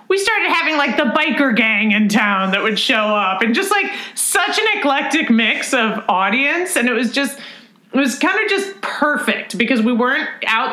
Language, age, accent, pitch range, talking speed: English, 30-49, American, 190-245 Hz, 200 wpm